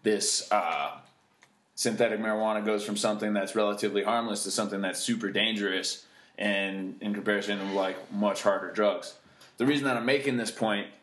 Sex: male